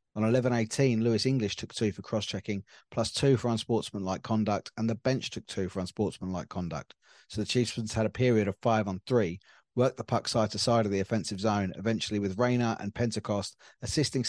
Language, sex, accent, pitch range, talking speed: English, male, British, 100-120 Hz, 195 wpm